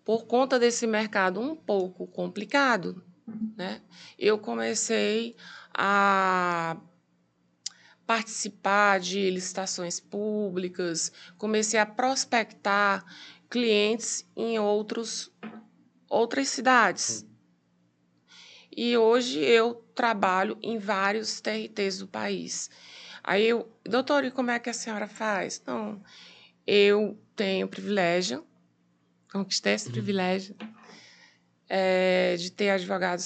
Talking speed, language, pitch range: 95 wpm, Portuguese, 190-230 Hz